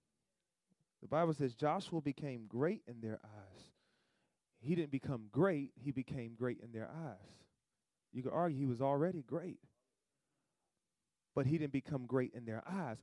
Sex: male